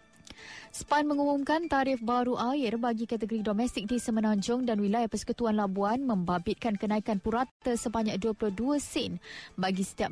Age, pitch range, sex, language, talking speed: 20-39, 220-250 Hz, female, Malay, 130 wpm